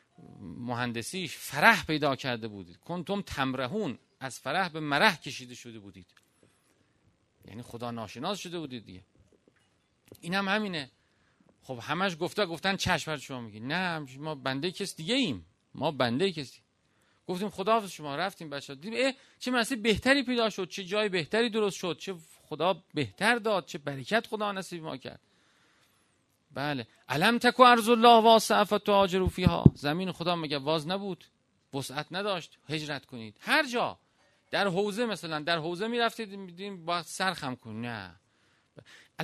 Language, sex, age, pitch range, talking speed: Persian, male, 40-59, 135-210 Hz, 145 wpm